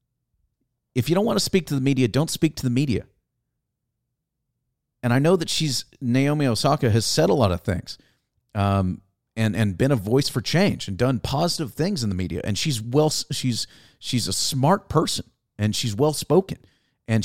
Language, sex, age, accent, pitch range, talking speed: English, male, 40-59, American, 100-140 Hz, 190 wpm